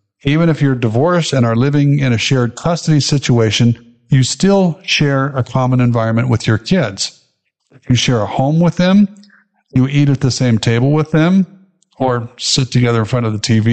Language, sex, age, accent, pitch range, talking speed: English, male, 50-69, American, 120-160 Hz, 190 wpm